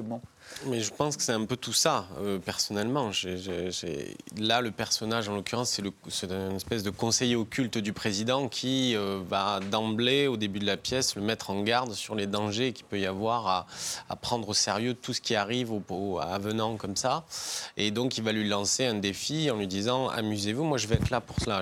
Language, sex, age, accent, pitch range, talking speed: French, male, 20-39, French, 100-115 Hz, 230 wpm